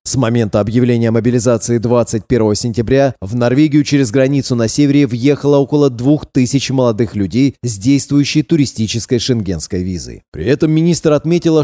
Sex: male